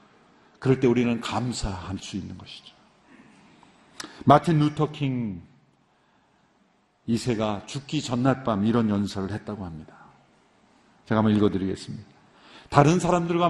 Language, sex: Korean, male